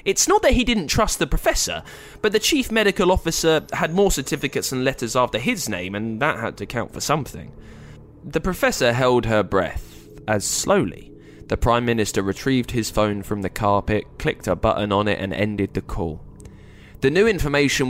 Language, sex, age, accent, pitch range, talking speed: English, male, 20-39, British, 100-135 Hz, 190 wpm